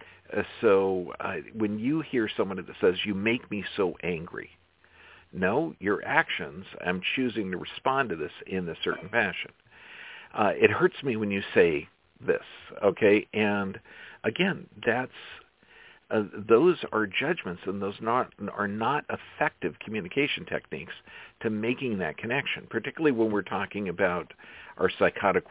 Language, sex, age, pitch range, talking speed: English, male, 50-69, 95-110 Hz, 145 wpm